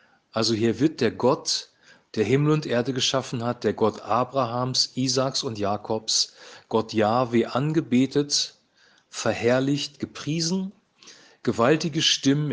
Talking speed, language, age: 115 wpm, German, 40-59